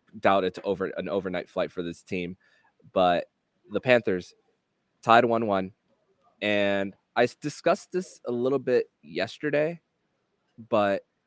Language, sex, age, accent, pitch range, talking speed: English, male, 20-39, American, 90-115 Hz, 130 wpm